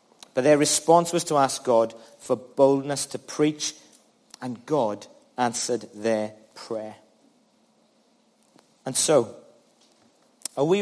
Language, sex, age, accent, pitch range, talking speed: English, male, 40-59, British, 135-175 Hz, 110 wpm